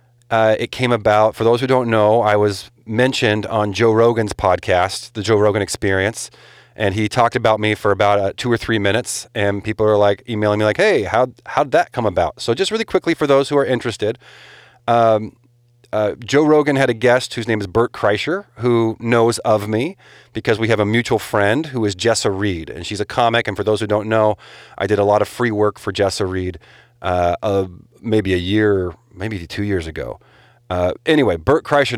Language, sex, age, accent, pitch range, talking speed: English, male, 30-49, American, 100-120 Hz, 210 wpm